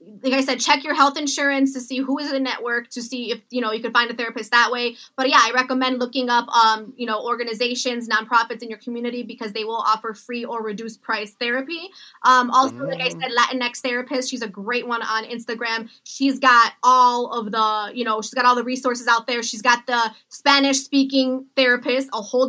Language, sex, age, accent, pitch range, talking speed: English, female, 20-39, American, 230-265 Hz, 225 wpm